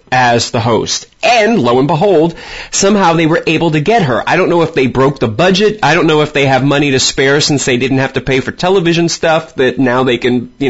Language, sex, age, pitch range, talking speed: English, male, 30-49, 120-160 Hz, 250 wpm